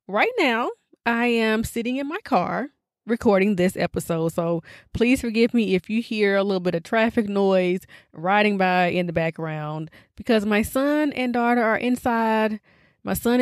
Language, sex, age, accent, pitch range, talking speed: English, female, 20-39, American, 185-245 Hz, 170 wpm